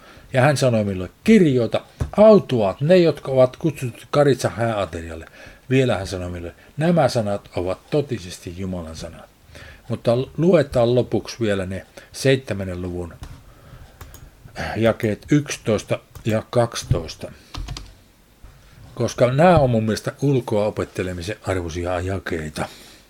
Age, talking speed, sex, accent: 50-69, 110 wpm, male, native